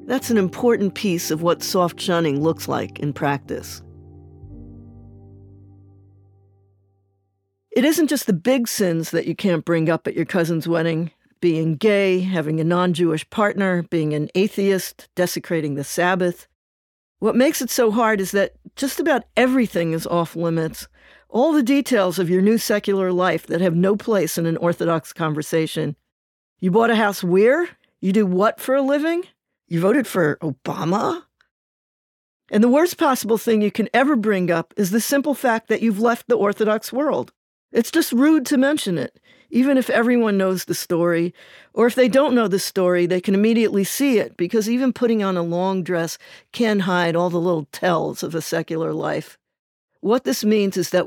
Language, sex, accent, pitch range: English, female, American, 165-230 Hz